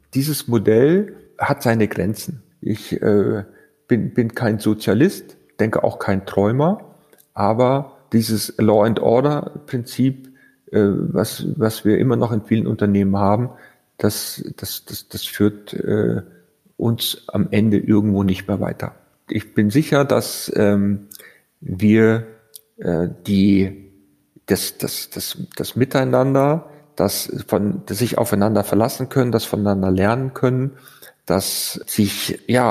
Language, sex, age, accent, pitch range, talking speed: German, male, 40-59, German, 100-125 Hz, 125 wpm